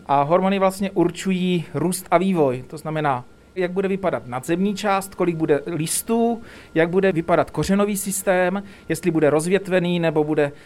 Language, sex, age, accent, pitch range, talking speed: Czech, male, 40-59, native, 155-190 Hz, 145 wpm